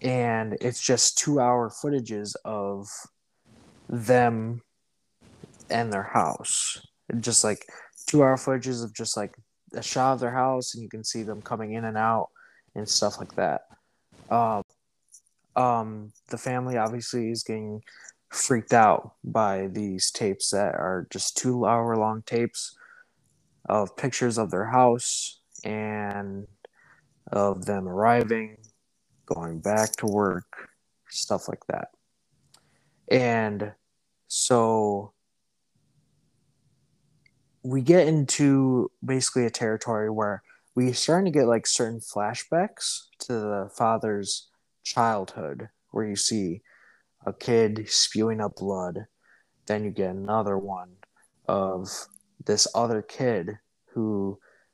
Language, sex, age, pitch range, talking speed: English, male, 20-39, 105-125 Hz, 115 wpm